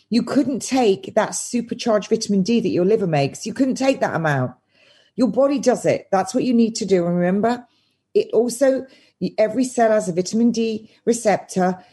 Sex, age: female, 40-59